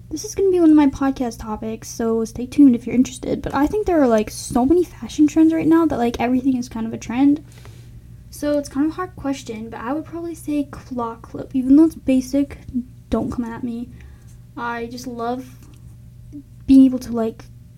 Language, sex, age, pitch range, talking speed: English, female, 10-29, 230-280 Hz, 215 wpm